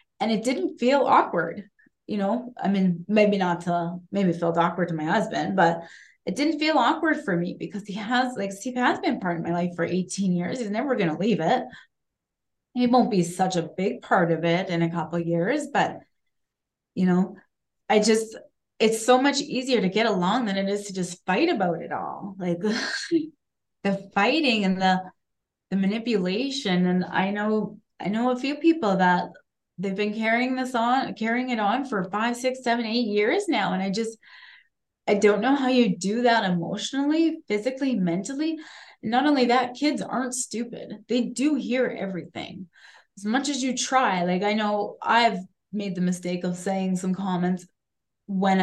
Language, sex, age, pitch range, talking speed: English, female, 20-39, 185-260 Hz, 190 wpm